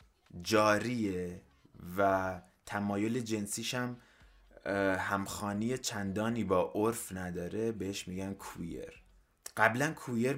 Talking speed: 80 wpm